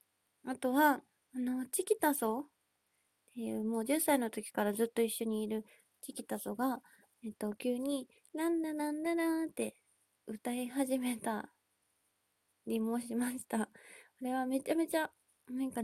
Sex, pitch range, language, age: female, 225-295 Hz, Japanese, 20-39